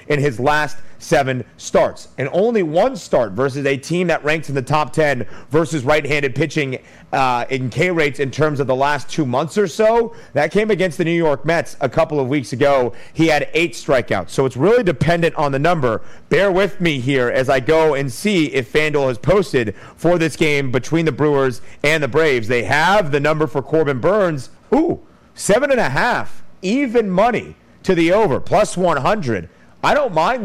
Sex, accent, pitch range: male, American, 135-165 Hz